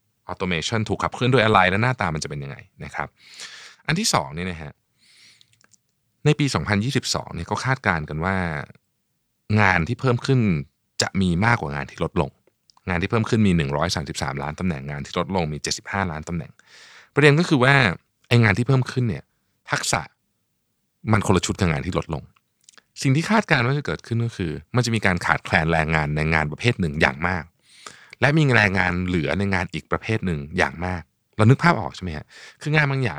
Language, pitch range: Thai, 85-125 Hz